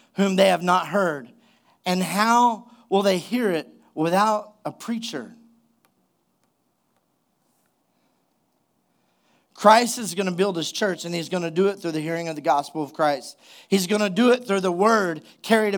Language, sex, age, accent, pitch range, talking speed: English, male, 40-59, American, 175-220 Hz, 165 wpm